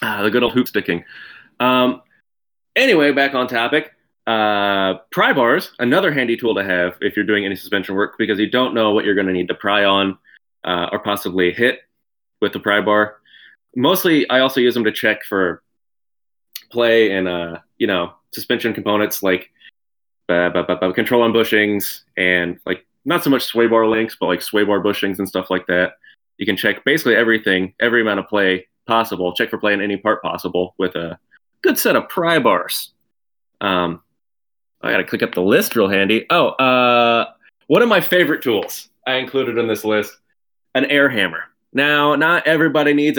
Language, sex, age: English, male, 20-39